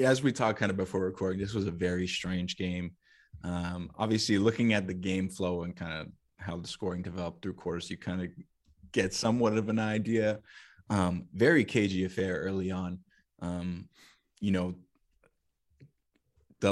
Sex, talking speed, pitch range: male, 170 wpm, 90-110 Hz